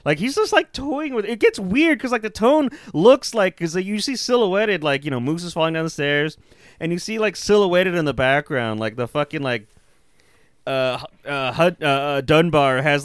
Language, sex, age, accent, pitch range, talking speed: English, male, 30-49, American, 130-185 Hz, 210 wpm